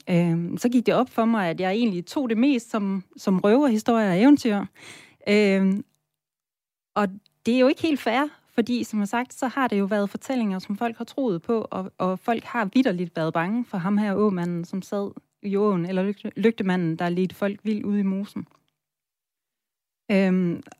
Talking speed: 195 wpm